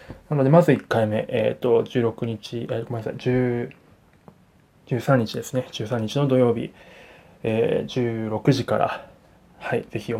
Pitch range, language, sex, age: 110-145 Hz, Japanese, male, 20-39